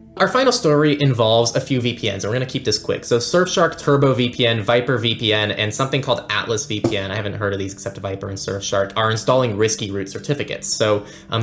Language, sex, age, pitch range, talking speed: English, male, 20-39, 100-130 Hz, 210 wpm